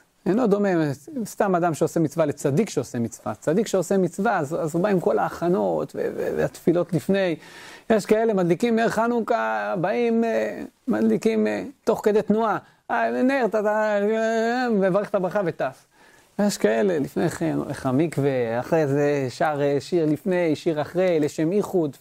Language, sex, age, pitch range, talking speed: Hebrew, male, 40-59, 150-210 Hz, 95 wpm